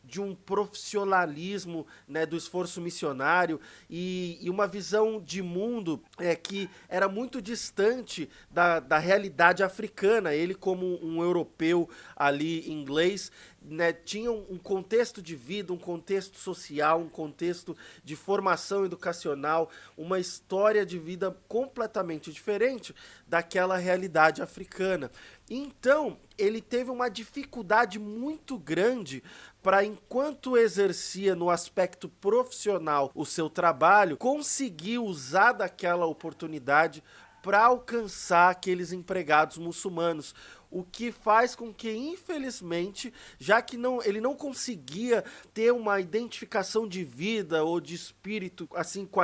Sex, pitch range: male, 165-215 Hz